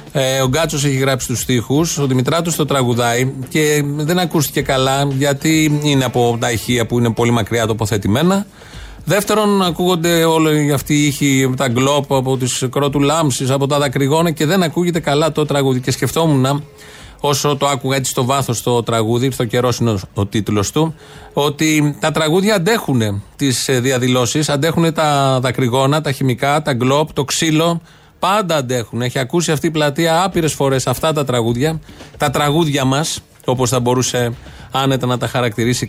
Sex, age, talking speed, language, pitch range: male, 30-49, 160 wpm, Greek, 125-160 Hz